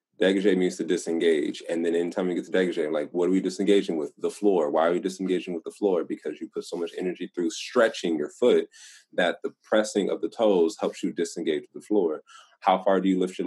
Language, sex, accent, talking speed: English, male, American, 240 wpm